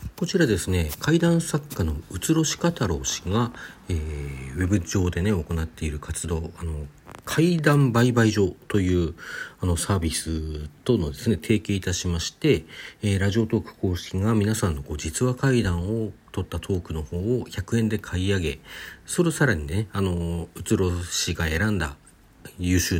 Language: Japanese